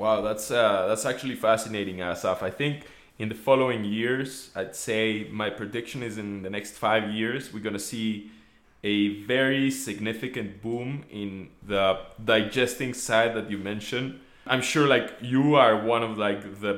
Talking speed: 170 wpm